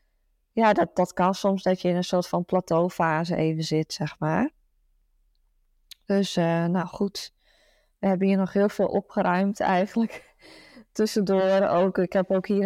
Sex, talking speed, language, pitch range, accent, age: female, 160 wpm, Dutch, 180-205 Hz, Dutch, 20-39